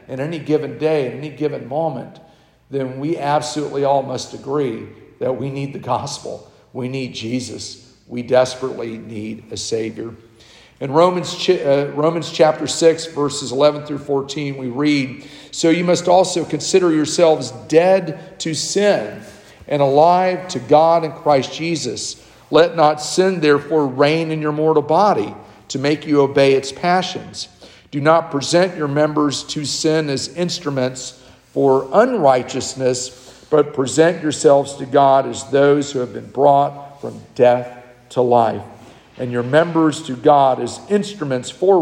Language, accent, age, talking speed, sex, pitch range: English, American, 50-69, 150 wpm, male, 130-160 Hz